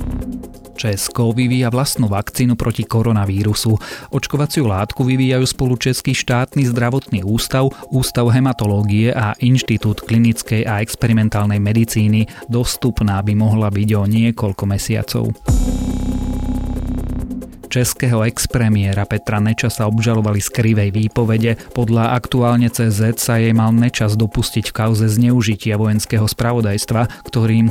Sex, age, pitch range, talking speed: male, 30-49, 105-120 Hz, 115 wpm